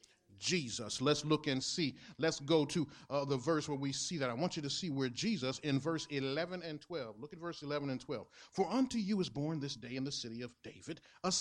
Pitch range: 140-200 Hz